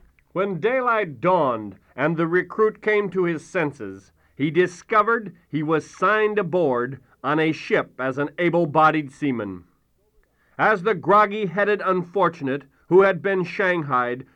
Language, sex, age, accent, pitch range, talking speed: English, male, 40-59, American, 145-205 Hz, 130 wpm